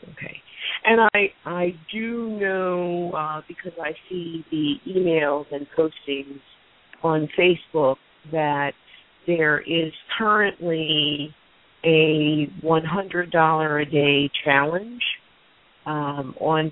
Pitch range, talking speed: 145-165 Hz, 95 wpm